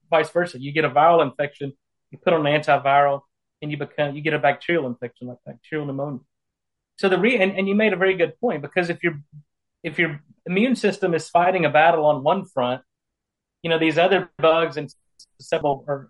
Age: 30-49